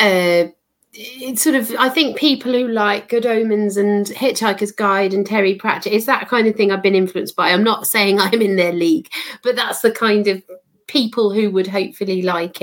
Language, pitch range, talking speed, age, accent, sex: English, 195-240 Hz, 205 wpm, 30-49, British, female